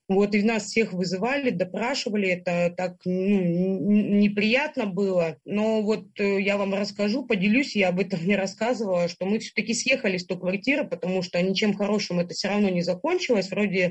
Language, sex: Russian, female